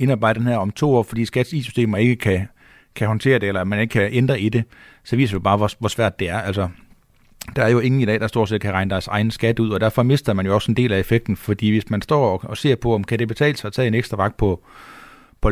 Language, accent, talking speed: Danish, native, 285 wpm